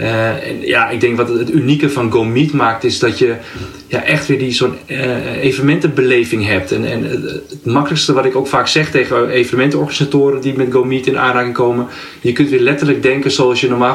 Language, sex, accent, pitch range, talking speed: Dutch, male, Dutch, 120-140 Hz, 200 wpm